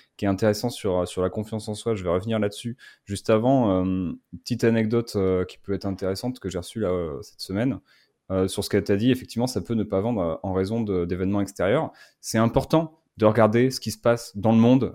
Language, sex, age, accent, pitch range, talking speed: French, male, 20-39, French, 100-120 Hz, 235 wpm